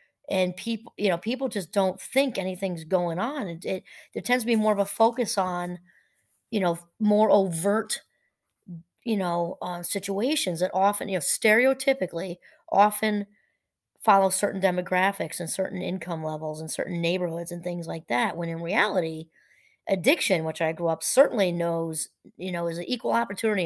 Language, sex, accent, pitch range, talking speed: English, female, American, 170-210 Hz, 165 wpm